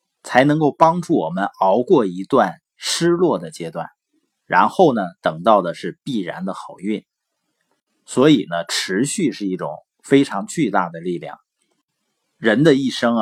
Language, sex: Chinese, male